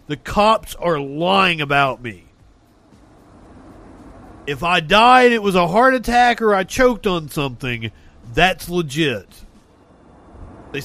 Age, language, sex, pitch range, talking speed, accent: 40-59, English, male, 160-215 Hz, 120 wpm, American